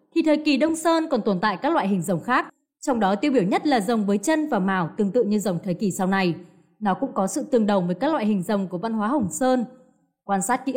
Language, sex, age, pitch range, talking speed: Vietnamese, female, 20-39, 195-285 Hz, 285 wpm